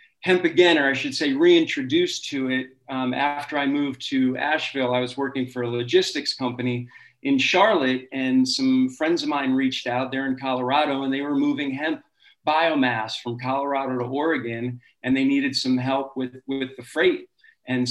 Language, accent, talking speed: English, American, 180 wpm